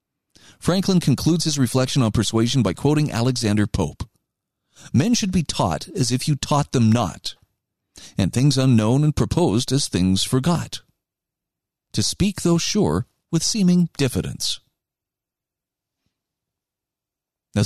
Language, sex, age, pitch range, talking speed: English, male, 40-59, 110-160 Hz, 120 wpm